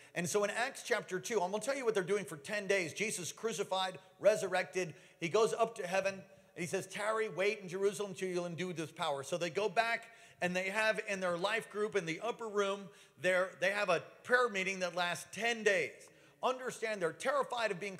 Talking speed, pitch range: 220 wpm, 180-225 Hz